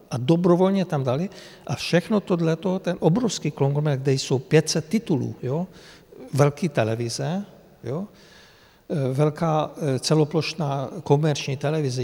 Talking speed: 110 wpm